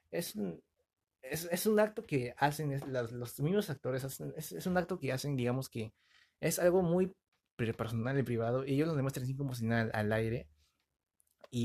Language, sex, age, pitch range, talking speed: Spanish, male, 20-39, 120-160 Hz, 190 wpm